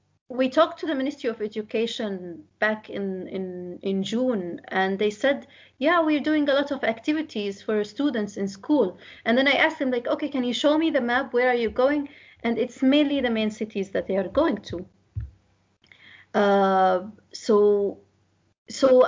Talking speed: 180 wpm